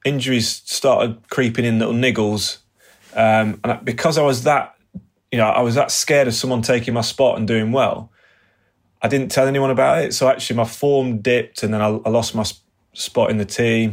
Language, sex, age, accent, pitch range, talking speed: English, male, 30-49, British, 110-125 Hz, 205 wpm